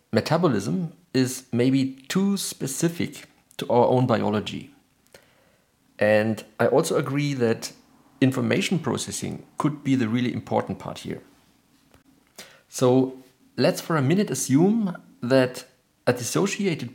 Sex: male